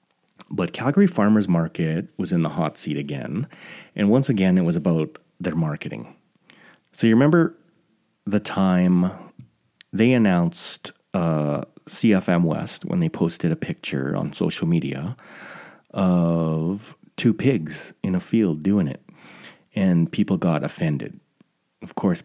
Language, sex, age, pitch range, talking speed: English, male, 30-49, 85-115 Hz, 135 wpm